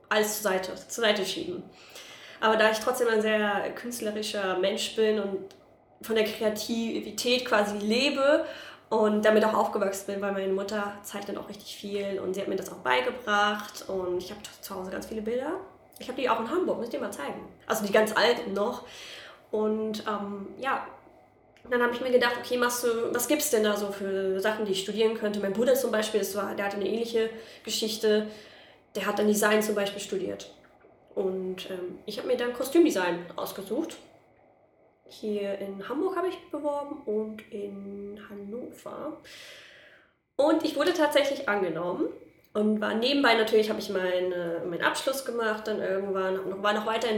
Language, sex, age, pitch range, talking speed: German, female, 20-39, 200-240 Hz, 180 wpm